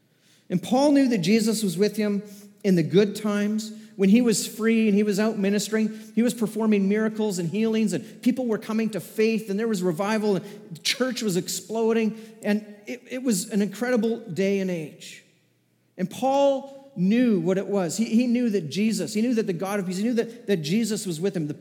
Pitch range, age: 185-225 Hz, 40-59